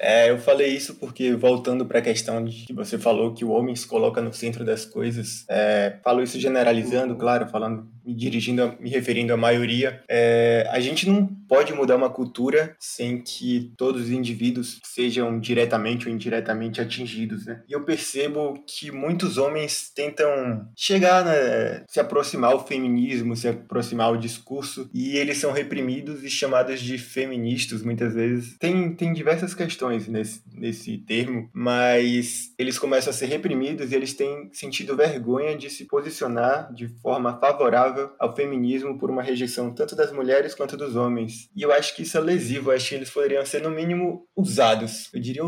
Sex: male